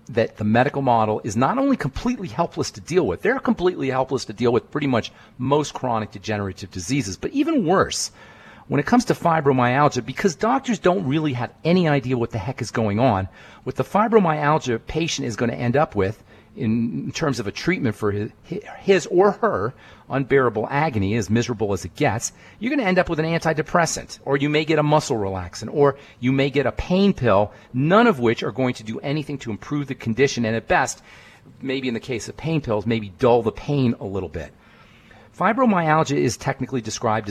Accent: American